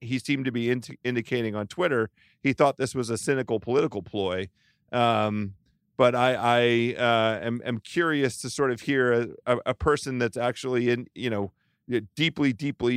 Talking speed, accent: 175 wpm, American